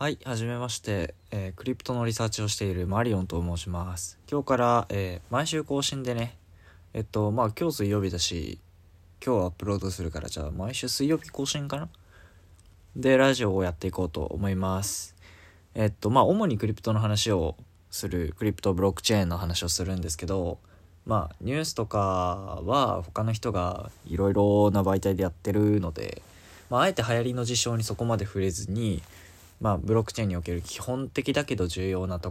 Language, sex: Japanese, male